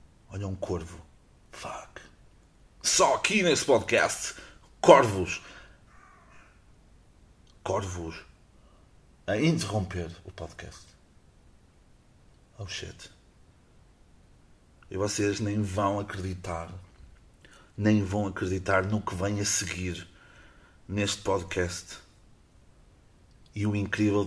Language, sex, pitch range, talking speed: Portuguese, male, 90-115 Hz, 85 wpm